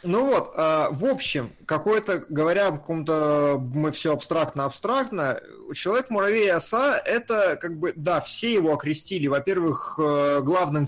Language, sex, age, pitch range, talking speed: Russian, male, 20-39, 145-190 Hz, 125 wpm